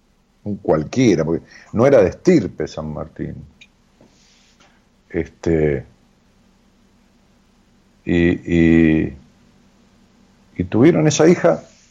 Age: 50-69